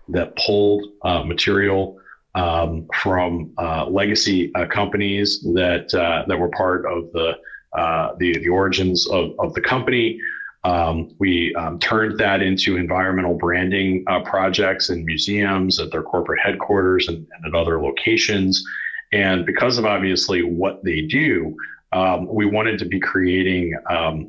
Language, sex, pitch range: German, male, 85-95 Hz